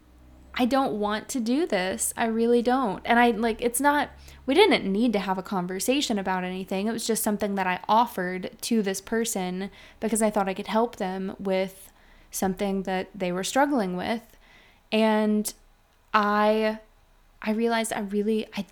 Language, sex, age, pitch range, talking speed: English, female, 20-39, 190-230 Hz, 175 wpm